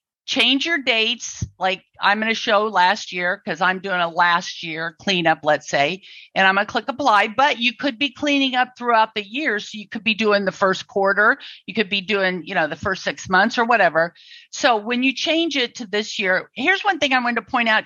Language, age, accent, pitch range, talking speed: English, 50-69, American, 195-265 Hz, 230 wpm